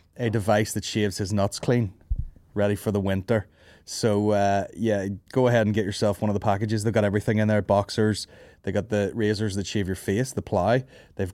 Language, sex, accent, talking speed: English, male, Irish, 210 wpm